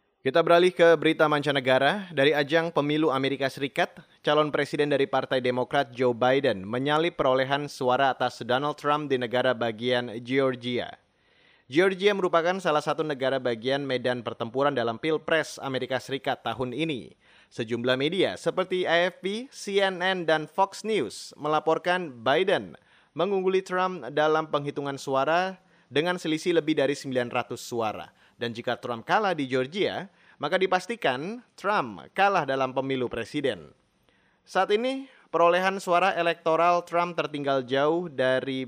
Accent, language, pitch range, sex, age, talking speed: native, Indonesian, 130-170 Hz, male, 30-49, 130 wpm